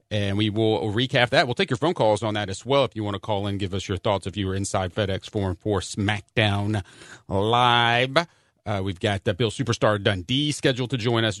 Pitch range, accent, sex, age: 100-130 Hz, American, male, 40-59